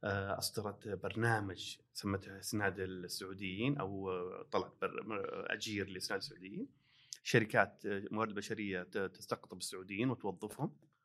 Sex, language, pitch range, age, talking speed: male, Arabic, 105-140 Hz, 30-49, 85 wpm